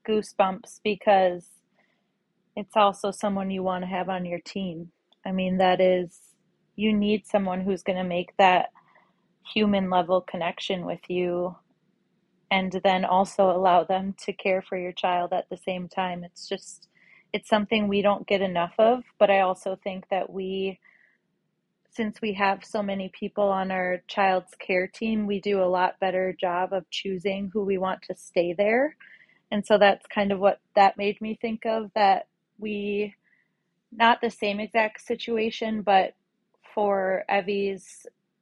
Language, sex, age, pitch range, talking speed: English, female, 30-49, 185-210 Hz, 160 wpm